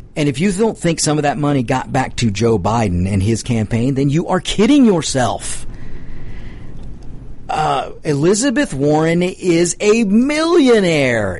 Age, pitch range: 50-69, 120-170 Hz